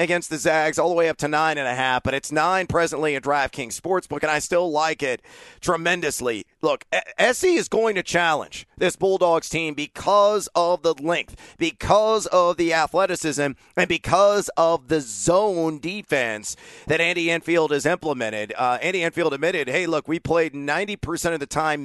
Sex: male